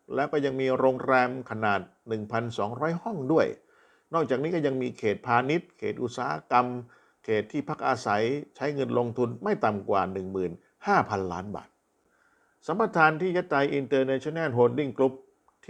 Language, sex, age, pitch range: Thai, male, 50-69, 105-135 Hz